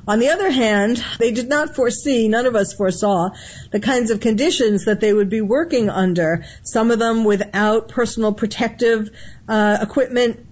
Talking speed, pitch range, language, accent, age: 170 wpm, 190-225 Hz, English, American, 50-69